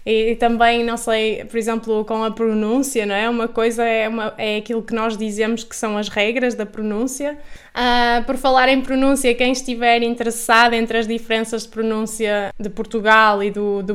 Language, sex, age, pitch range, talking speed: Portuguese, female, 10-29, 220-245 Hz, 190 wpm